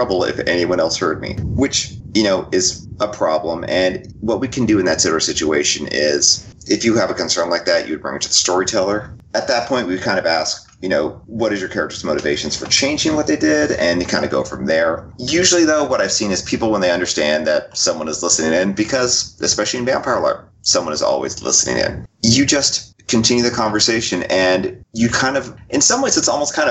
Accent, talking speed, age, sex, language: American, 230 wpm, 30-49, male, English